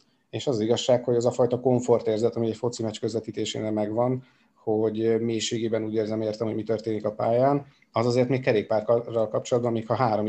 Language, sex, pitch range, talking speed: Hungarian, male, 110-125 Hz, 190 wpm